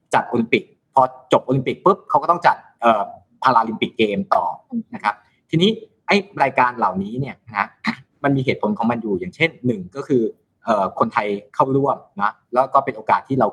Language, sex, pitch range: Thai, male, 115-175 Hz